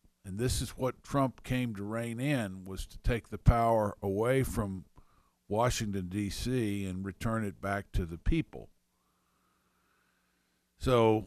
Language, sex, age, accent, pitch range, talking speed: English, male, 50-69, American, 75-105 Hz, 140 wpm